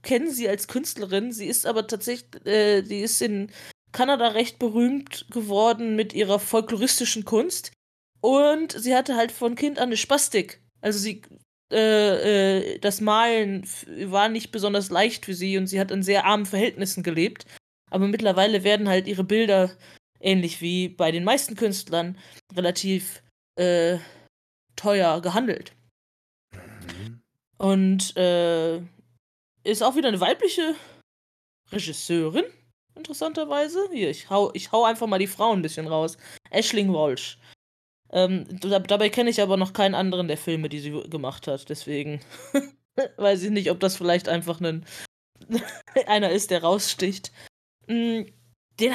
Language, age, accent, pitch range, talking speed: German, 20-39, German, 175-230 Hz, 145 wpm